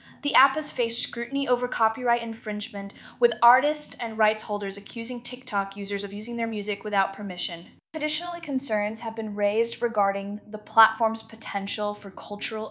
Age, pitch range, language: 10-29, 195-240 Hz, English